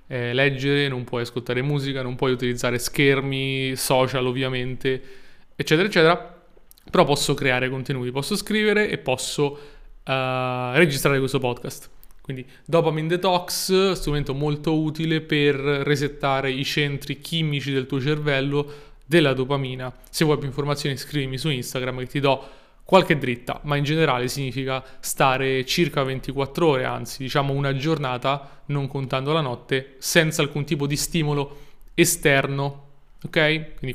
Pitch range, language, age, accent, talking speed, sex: 130-155 Hz, Italian, 20-39, native, 135 wpm, male